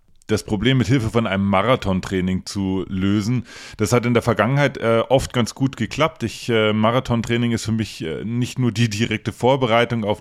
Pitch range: 95-115 Hz